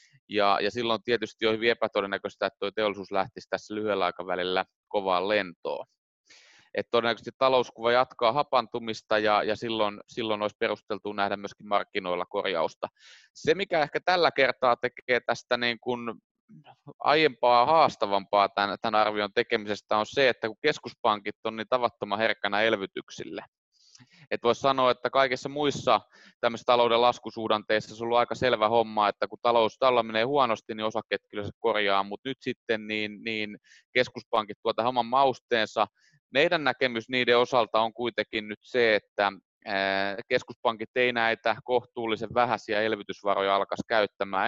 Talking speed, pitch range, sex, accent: 145 wpm, 100-120 Hz, male, native